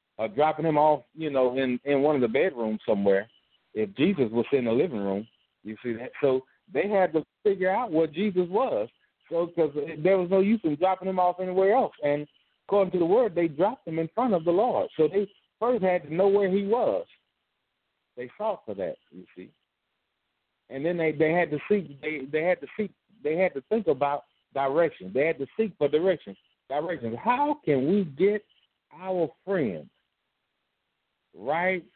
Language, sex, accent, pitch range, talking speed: English, male, American, 140-190 Hz, 195 wpm